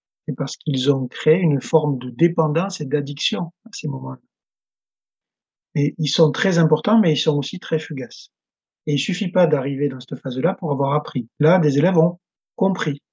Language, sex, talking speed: French, male, 185 wpm